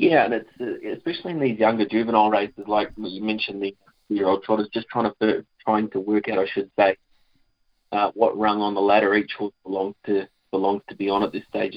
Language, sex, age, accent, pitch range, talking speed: English, male, 20-39, Australian, 100-110 Hz, 225 wpm